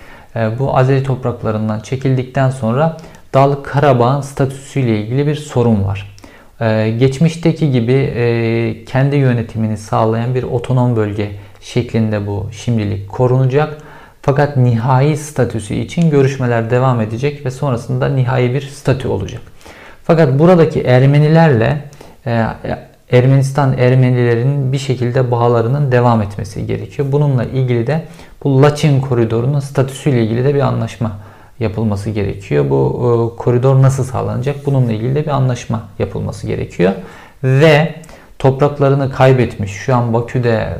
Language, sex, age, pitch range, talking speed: Turkish, male, 50-69, 110-135 Hz, 115 wpm